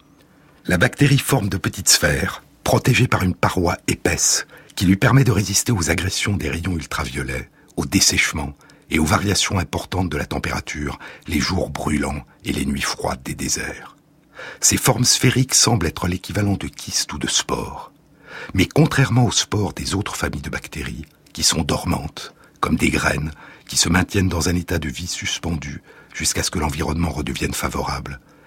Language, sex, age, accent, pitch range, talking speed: French, male, 60-79, French, 75-100 Hz, 170 wpm